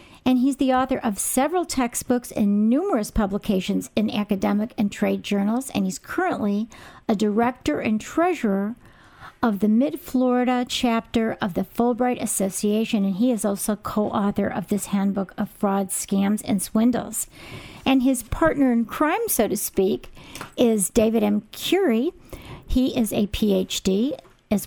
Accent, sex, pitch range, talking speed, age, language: American, female, 210-260 Hz, 145 wpm, 50-69, English